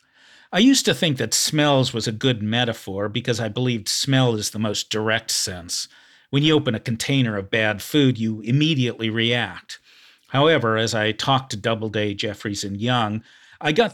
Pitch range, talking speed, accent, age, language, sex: 110-135 Hz, 175 wpm, American, 50-69, English, male